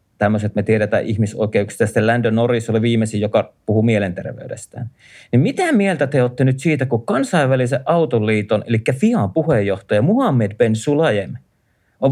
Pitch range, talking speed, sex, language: 115-160 Hz, 150 wpm, male, Finnish